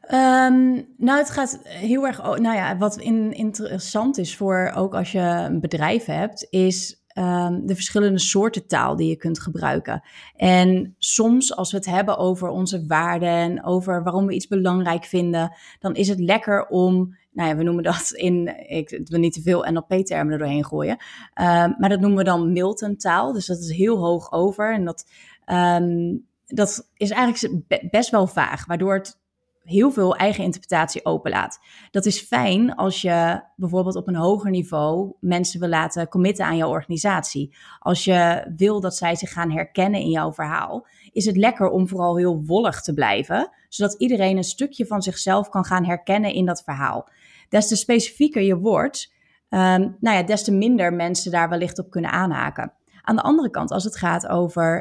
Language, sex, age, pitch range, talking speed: English, female, 20-39, 175-210 Hz, 175 wpm